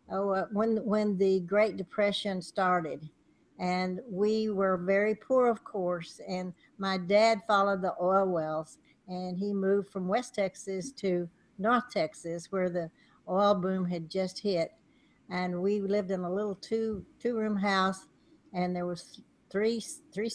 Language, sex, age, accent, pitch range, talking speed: English, female, 60-79, American, 180-215 Hz, 155 wpm